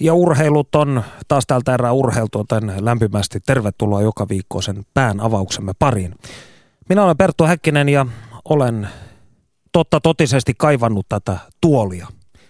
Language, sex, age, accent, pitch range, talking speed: Finnish, male, 30-49, native, 105-135 Hz, 130 wpm